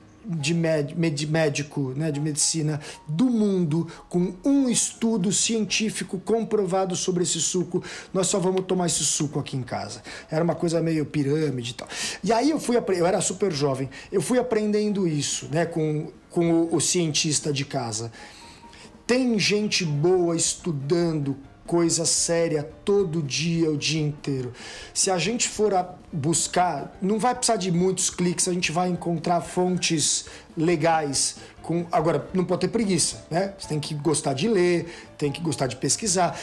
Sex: male